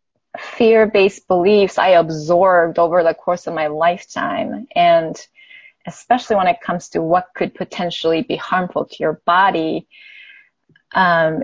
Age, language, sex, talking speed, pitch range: 20-39, English, female, 130 wpm, 170-230 Hz